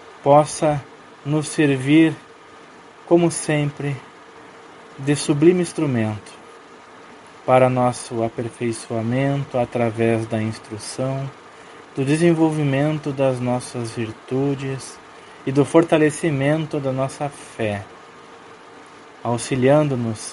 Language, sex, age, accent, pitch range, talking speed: Portuguese, male, 20-39, Brazilian, 120-155 Hz, 75 wpm